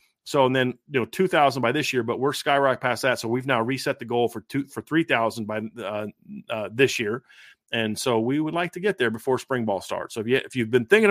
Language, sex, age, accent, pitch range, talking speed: English, male, 30-49, American, 125-145 Hz, 255 wpm